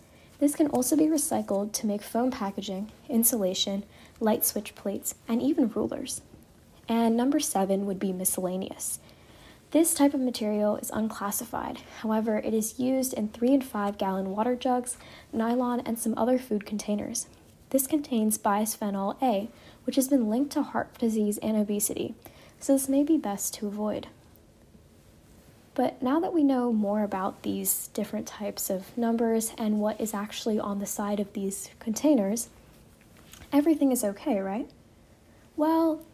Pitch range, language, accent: 210-260 Hz, English, American